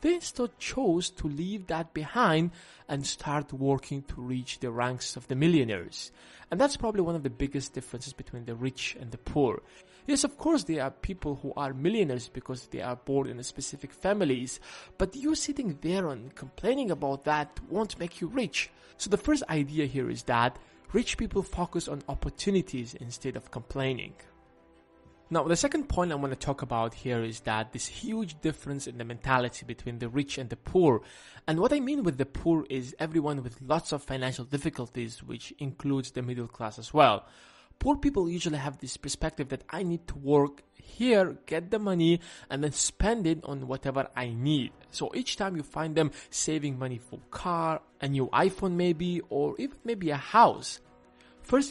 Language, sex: English, male